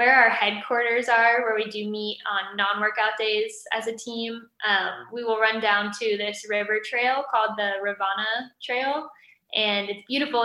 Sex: female